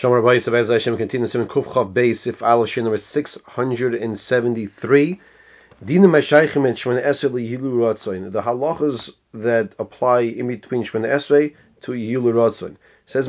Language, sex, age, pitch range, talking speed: English, male, 30-49, 120-150 Hz, 150 wpm